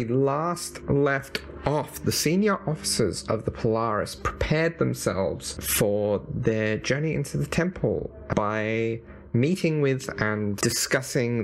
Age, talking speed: 30-49, 115 wpm